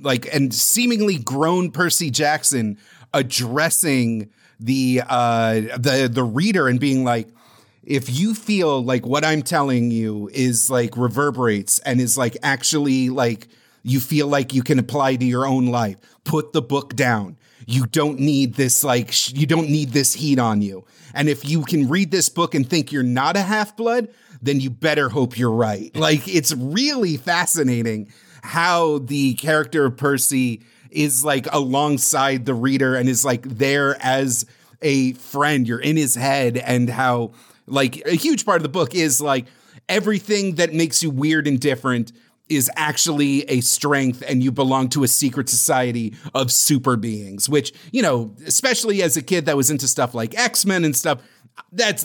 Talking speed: 175 wpm